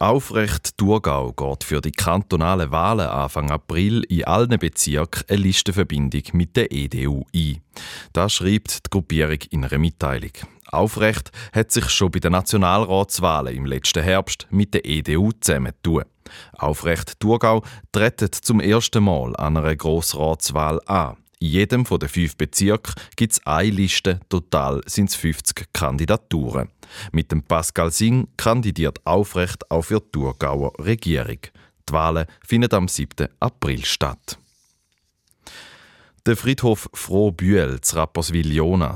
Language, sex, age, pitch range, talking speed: German, male, 30-49, 75-105 Hz, 135 wpm